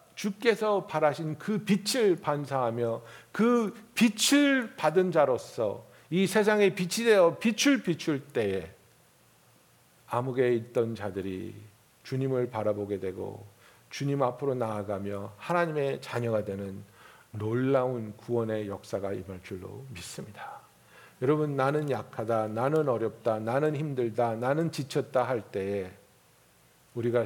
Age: 50-69